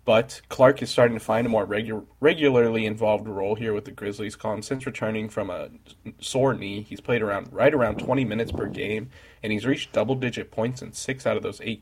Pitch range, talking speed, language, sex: 105-120 Hz, 220 wpm, English, male